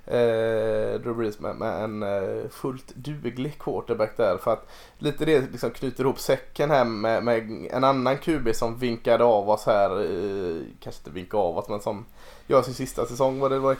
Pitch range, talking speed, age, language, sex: 115-145 Hz, 190 wpm, 20-39, Swedish, male